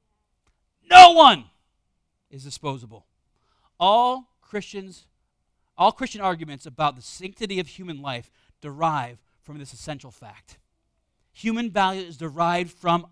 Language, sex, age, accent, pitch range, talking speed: English, male, 40-59, American, 135-215 Hz, 115 wpm